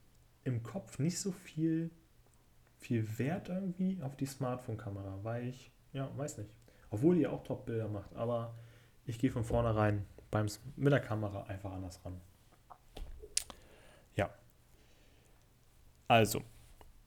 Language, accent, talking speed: German, German, 125 wpm